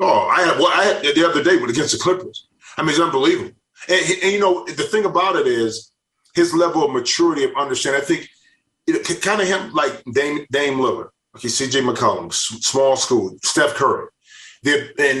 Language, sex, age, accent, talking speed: English, male, 30-49, American, 200 wpm